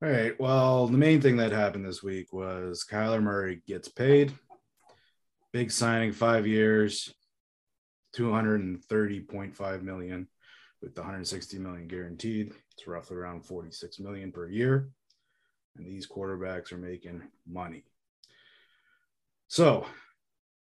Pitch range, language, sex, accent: 95-120 Hz, English, male, American